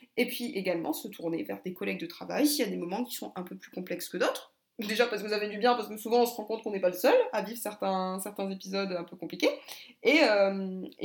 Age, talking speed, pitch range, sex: 20-39, 280 wpm, 180-240 Hz, female